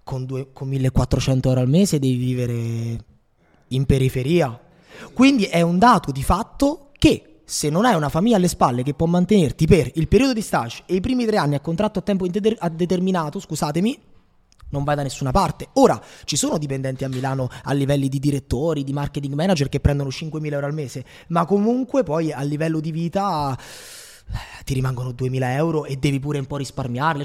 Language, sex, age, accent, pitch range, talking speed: Italian, male, 20-39, native, 140-210 Hz, 185 wpm